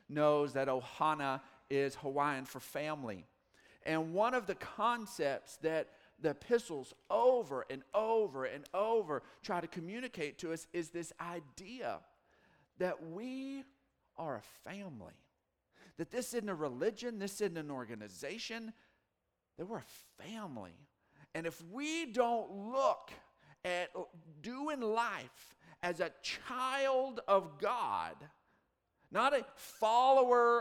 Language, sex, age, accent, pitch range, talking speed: English, male, 50-69, American, 170-245 Hz, 120 wpm